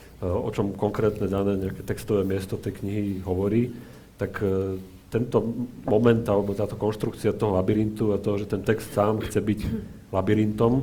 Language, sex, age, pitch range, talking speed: Slovak, male, 40-59, 95-110 Hz, 155 wpm